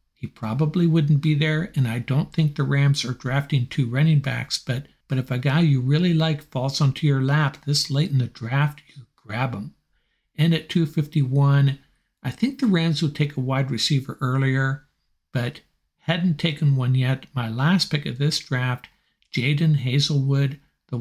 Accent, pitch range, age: American, 130-155 Hz, 60-79